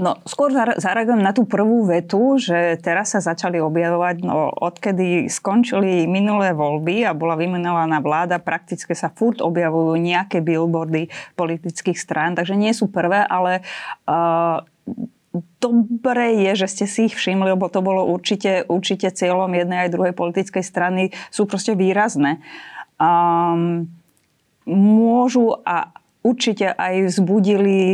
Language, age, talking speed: Slovak, 20-39, 135 wpm